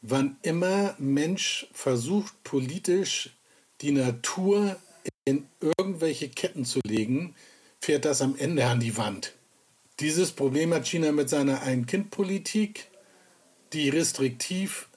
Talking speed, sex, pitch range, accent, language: 110 wpm, male, 135-175 Hz, German, German